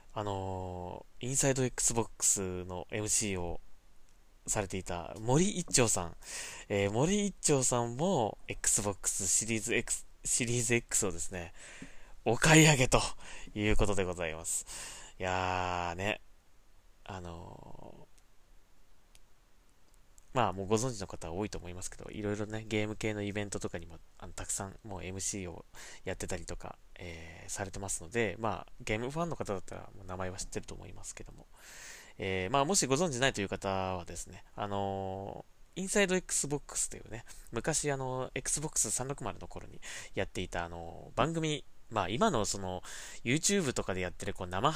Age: 20-39